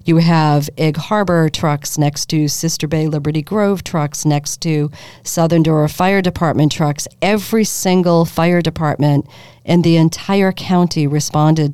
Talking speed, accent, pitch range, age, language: 145 wpm, American, 150-175 Hz, 40-59, English